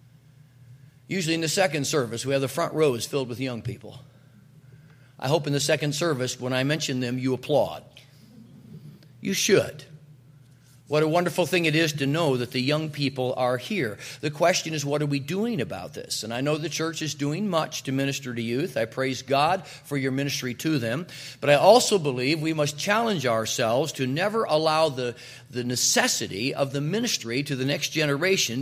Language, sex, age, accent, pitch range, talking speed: English, male, 40-59, American, 130-160 Hz, 195 wpm